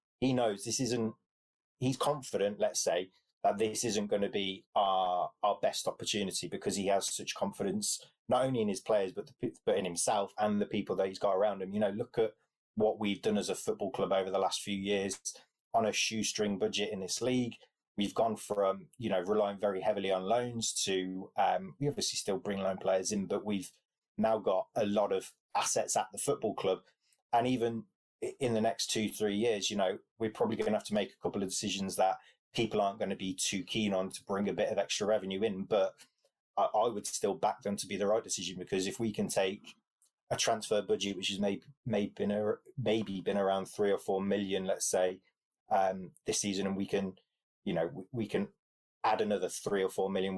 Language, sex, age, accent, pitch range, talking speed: English, male, 30-49, British, 95-110 Hz, 220 wpm